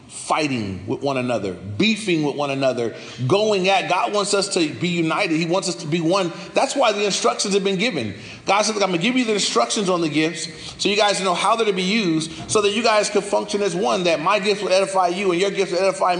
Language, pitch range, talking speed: English, 165-205 Hz, 250 wpm